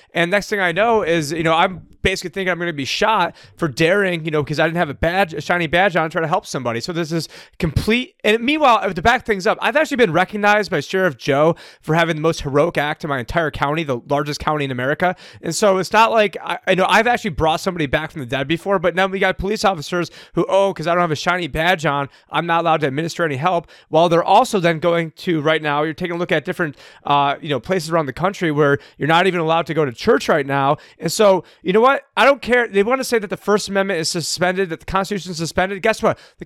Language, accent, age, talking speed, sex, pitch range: English, American, 30-49, 270 wpm, male, 165-210 Hz